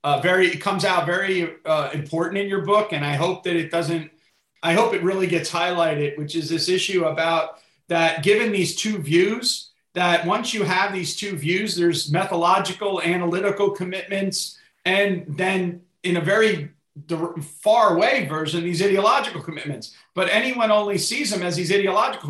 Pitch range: 165-190 Hz